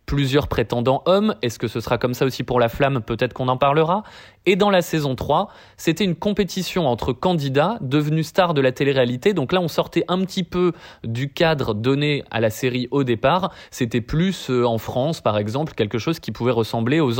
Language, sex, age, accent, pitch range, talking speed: French, male, 20-39, French, 120-180 Hz, 210 wpm